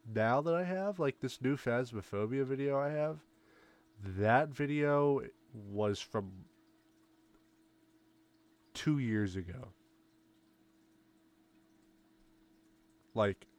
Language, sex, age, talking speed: English, male, 20-39, 85 wpm